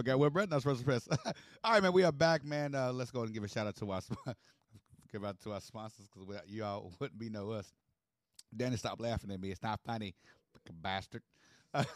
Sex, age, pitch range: male, 30-49, 95-125 Hz